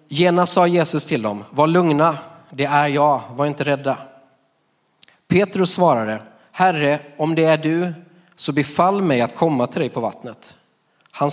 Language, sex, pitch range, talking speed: Swedish, male, 125-160 Hz, 160 wpm